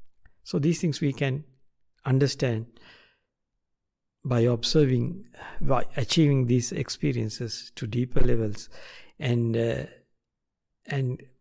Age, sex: 60-79, male